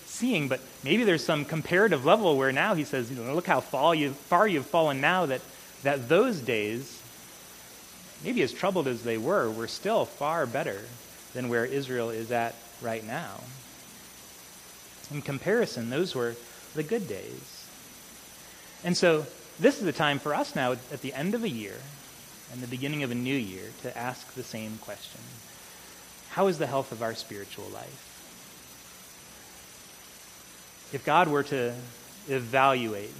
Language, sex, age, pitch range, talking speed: English, male, 30-49, 120-155 Hz, 160 wpm